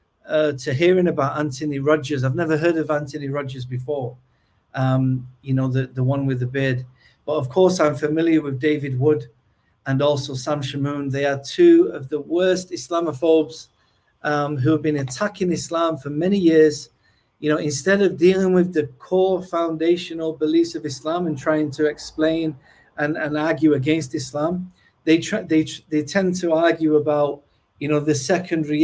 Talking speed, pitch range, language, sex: 175 wpm, 140-170 Hz, English, male